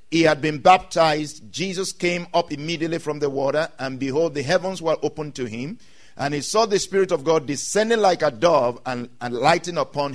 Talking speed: 200 wpm